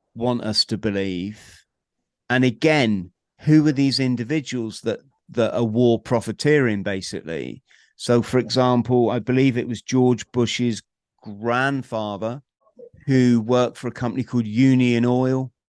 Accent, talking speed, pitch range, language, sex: British, 130 wpm, 115-140 Hz, English, male